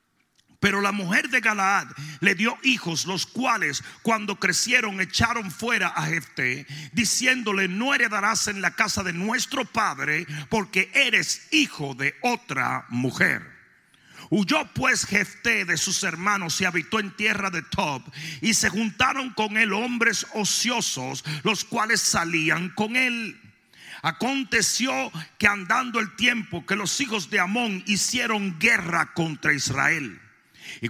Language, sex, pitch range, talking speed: Spanish, male, 170-225 Hz, 135 wpm